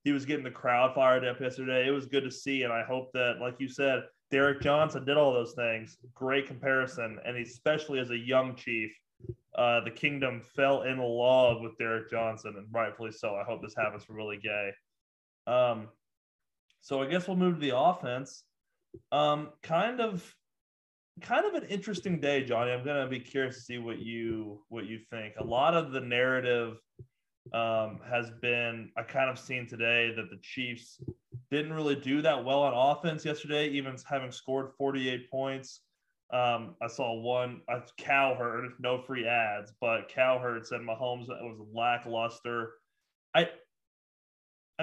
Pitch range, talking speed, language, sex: 115-140 Hz, 170 wpm, English, male